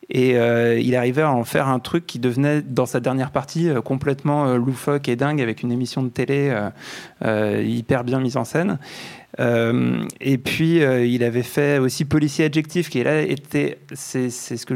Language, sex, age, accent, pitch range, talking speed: French, male, 20-39, French, 120-140 Hz, 205 wpm